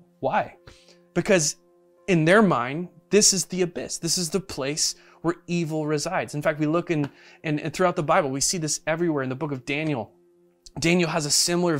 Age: 20-39